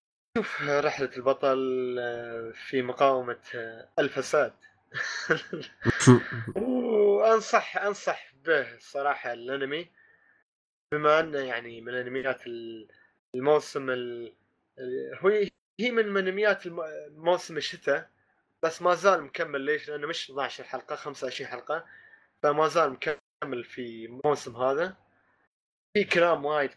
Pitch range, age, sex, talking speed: 125-160 Hz, 20-39, male, 95 wpm